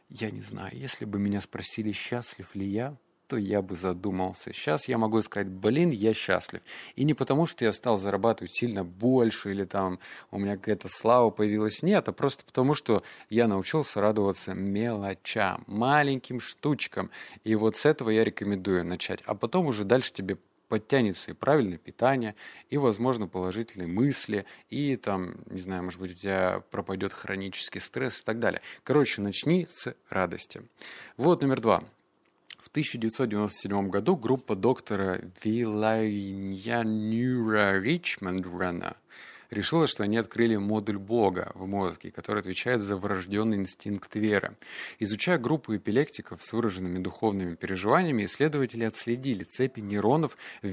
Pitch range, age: 95-120 Hz, 20-39